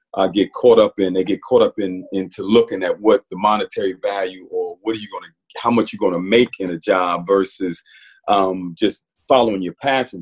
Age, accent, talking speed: 40-59, American, 230 wpm